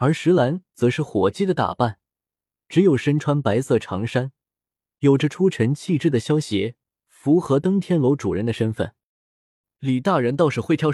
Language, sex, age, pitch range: Chinese, male, 20-39, 115-175 Hz